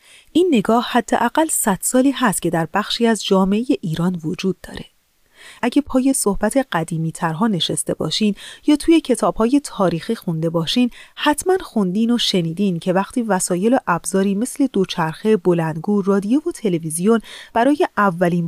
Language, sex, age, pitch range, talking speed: Persian, female, 30-49, 185-255 Hz, 135 wpm